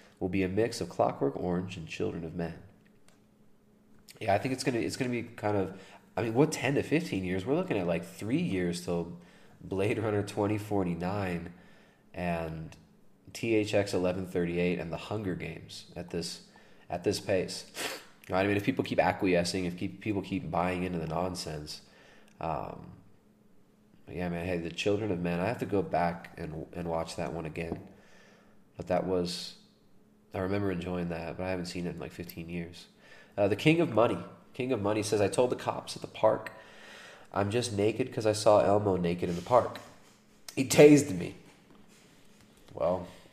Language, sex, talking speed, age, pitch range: English, male, 185 wpm, 30-49, 85-115 Hz